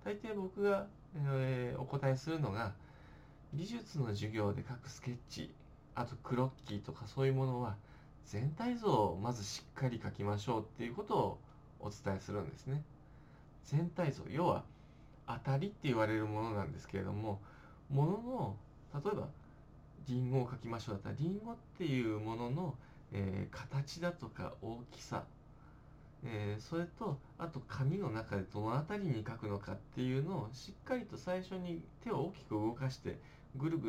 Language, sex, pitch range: Japanese, male, 115-155 Hz